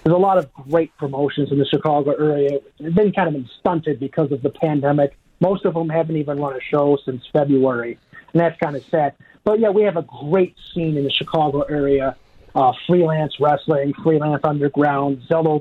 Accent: American